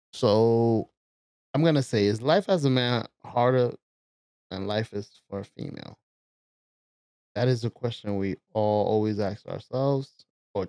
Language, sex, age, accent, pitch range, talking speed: English, male, 20-39, American, 95-125 Hz, 150 wpm